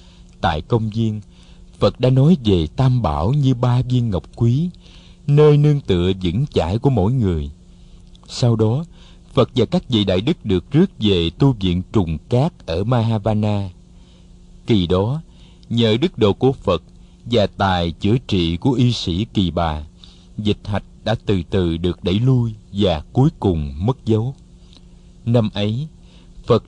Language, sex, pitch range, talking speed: Vietnamese, male, 90-125 Hz, 160 wpm